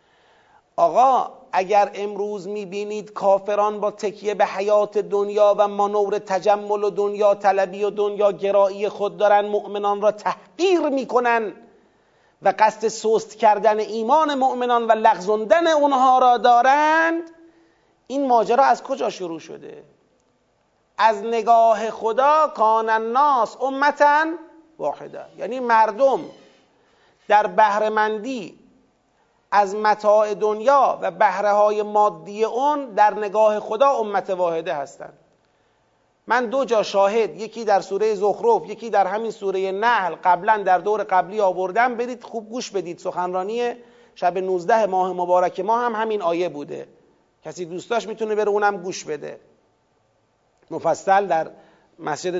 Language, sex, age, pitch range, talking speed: Persian, male, 40-59, 200-240 Hz, 125 wpm